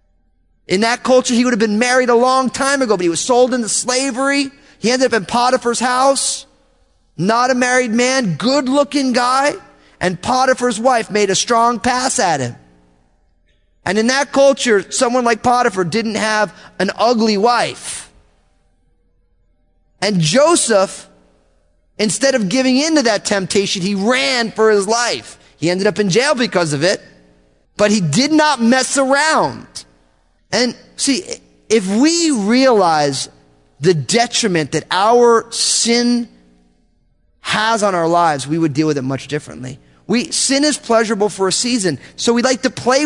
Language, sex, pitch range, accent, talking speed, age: English, male, 160-255 Hz, American, 155 wpm, 30-49